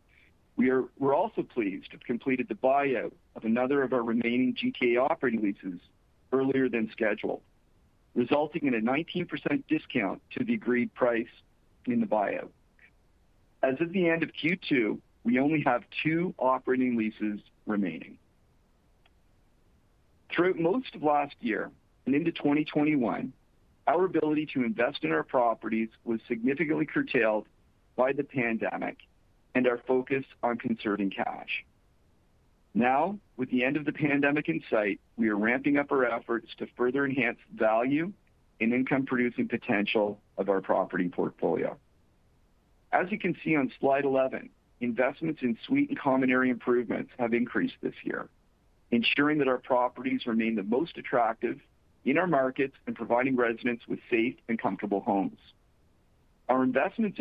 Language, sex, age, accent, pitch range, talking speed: English, male, 50-69, American, 115-145 Hz, 145 wpm